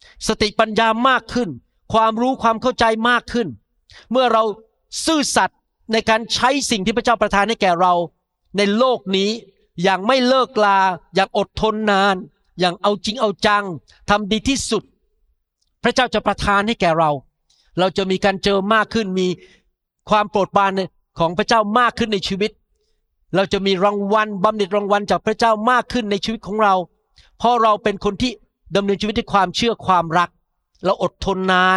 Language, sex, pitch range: Thai, male, 185-225 Hz